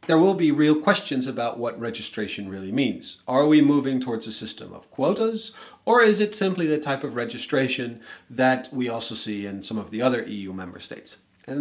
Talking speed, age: 200 wpm, 30-49